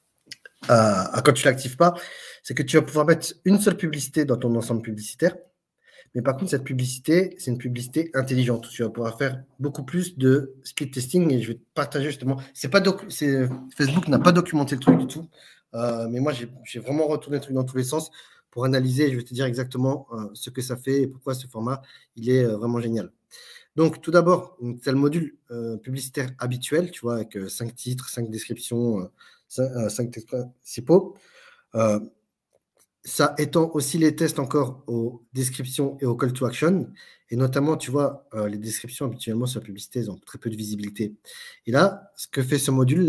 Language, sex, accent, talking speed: French, male, French, 205 wpm